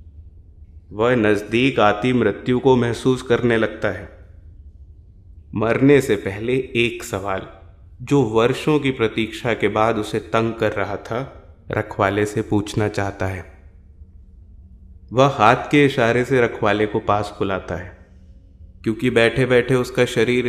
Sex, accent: male, native